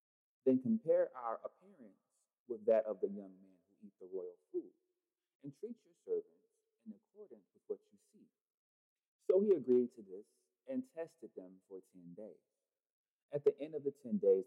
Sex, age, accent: male, 40-59, American